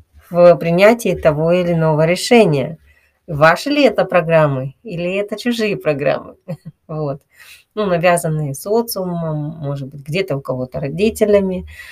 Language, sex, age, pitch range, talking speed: Russian, female, 30-49, 155-185 Hz, 120 wpm